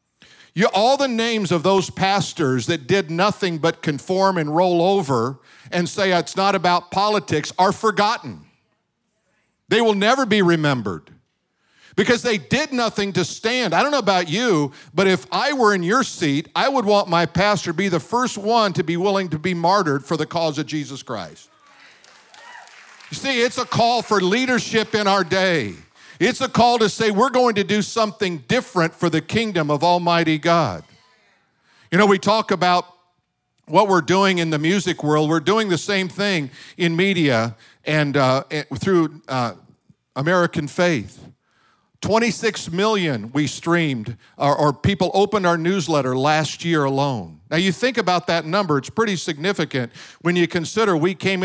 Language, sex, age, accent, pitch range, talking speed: English, male, 50-69, American, 155-205 Hz, 170 wpm